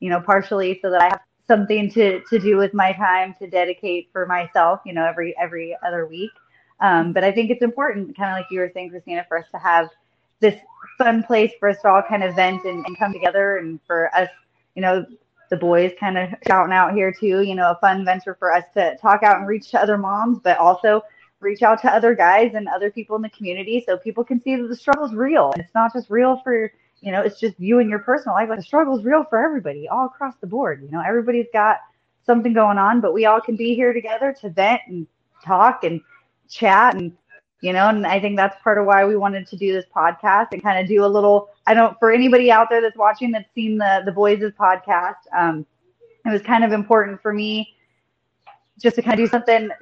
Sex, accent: female, American